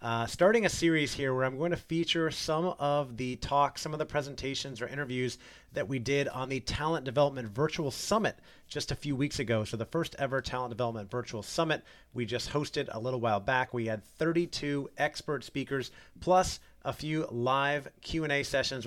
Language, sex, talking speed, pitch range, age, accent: English, male, 195 wpm, 120-145 Hz, 30-49, American